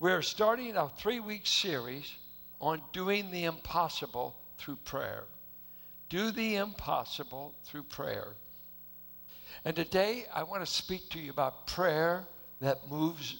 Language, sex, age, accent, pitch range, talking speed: English, male, 60-79, American, 130-185 Hz, 125 wpm